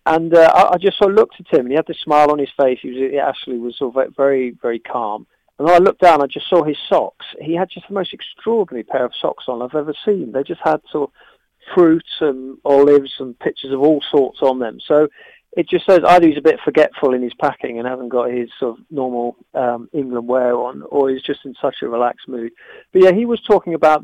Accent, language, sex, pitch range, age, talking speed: British, English, male, 125-145 Hz, 40-59, 255 wpm